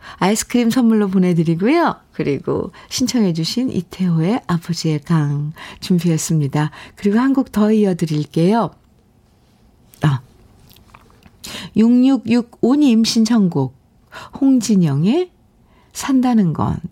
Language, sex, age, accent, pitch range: Korean, female, 50-69, native, 155-220 Hz